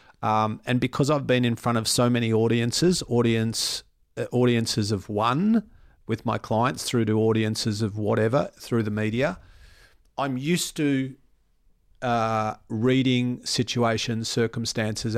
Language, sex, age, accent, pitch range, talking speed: English, male, 40-59, Australian, 115-135 Hz, 130 wpm